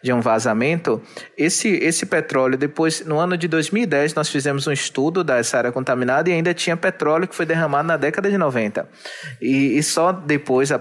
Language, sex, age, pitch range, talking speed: Portuguese, male, 20-39, 135-170 Hz, 190 wpm